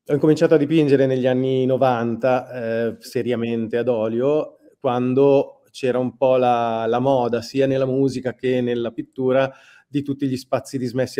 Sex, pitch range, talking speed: male, 115-135 Hz, 155 wpm